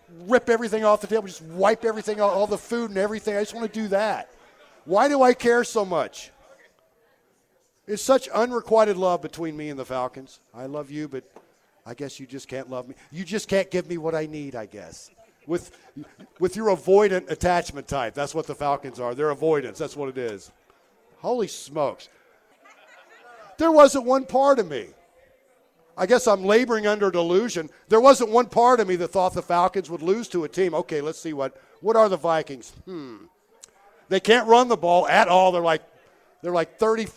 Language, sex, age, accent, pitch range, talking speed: English, male, 50-69, American, 155-220 Hz, 195 wpm